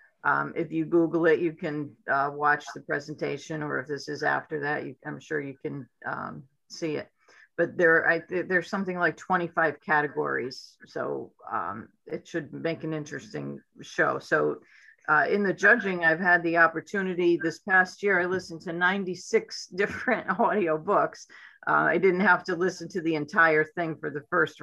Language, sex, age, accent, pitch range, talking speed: English, female, 50-69, American, 155-185 Hz, 170 wpm